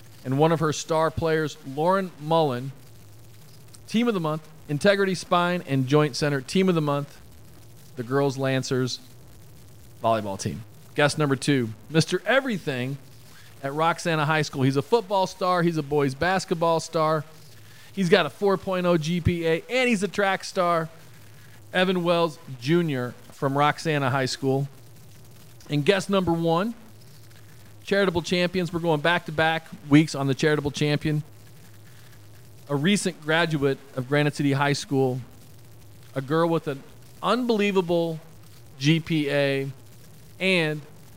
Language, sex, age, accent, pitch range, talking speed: English, male, 40-59, American, 125-165 Hz, 130 wpm